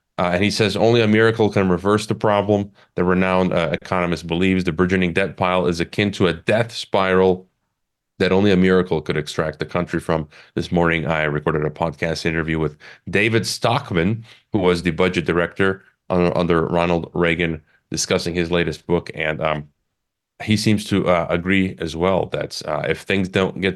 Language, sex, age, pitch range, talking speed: English, male, 30-49, 90-110 Hz, 180 wpm